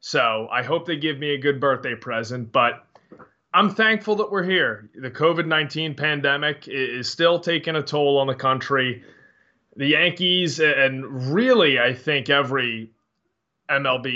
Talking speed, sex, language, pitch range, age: 150 wpm, male, English, 130-155 Hz, 20-39